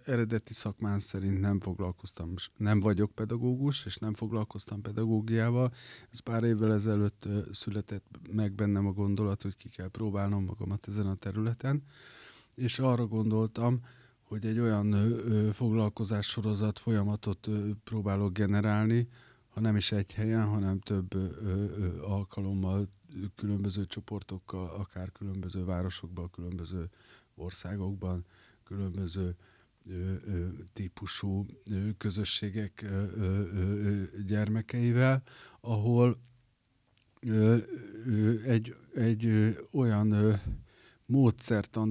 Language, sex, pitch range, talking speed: Hungarian, male, 100-115 Hz, 90 wpm